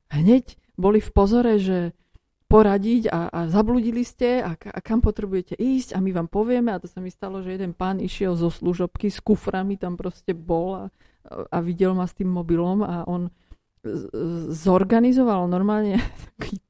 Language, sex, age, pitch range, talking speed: Slovak, female, 30-49, 180-210 Hz, 170 wpm